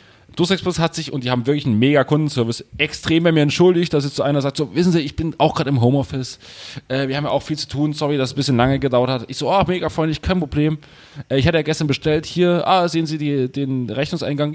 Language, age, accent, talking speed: German, 30-49, German, 270 wpm